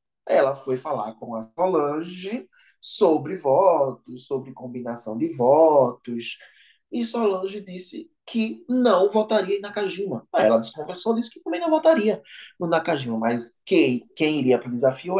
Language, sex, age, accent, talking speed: Portuguese, male, 20-39, Brazilian, 145 wpm